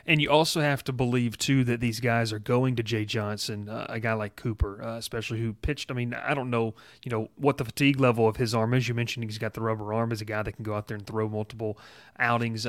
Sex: male